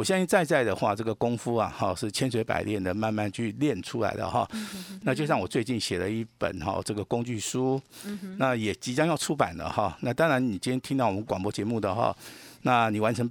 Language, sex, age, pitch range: Chinese, male, 50-69, 105-135 Hz